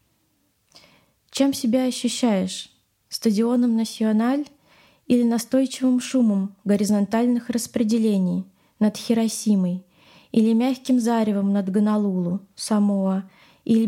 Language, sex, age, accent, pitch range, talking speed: Russian, female, 20-39, native, 195-230 Hz, 80 wpm